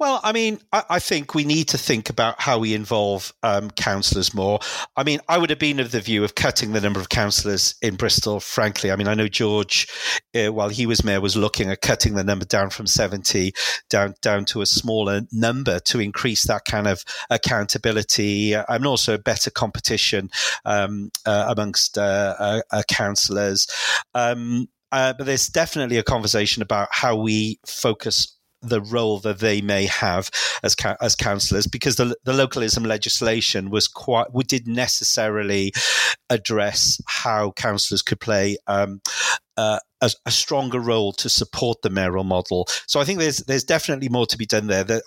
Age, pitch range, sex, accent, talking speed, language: 40-59, 105-125 Hz, male, British, 180 wpm, English